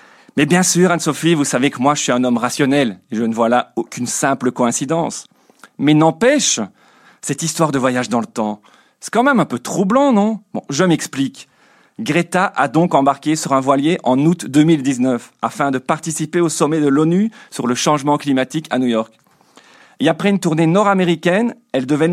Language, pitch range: French, 135-180 Hz